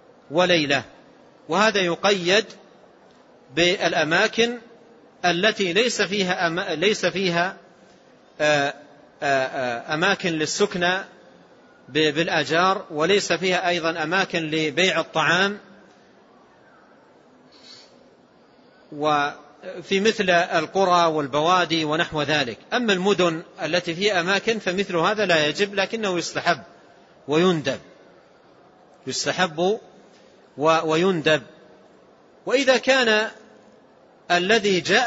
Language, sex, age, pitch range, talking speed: Arabic, male, 40-59, 165-210 Hz, 70 wpm